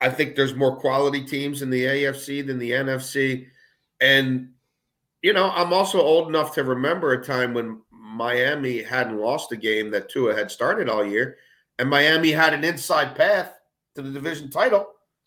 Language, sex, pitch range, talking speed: English, male, 120-155 Hz, 175 wpm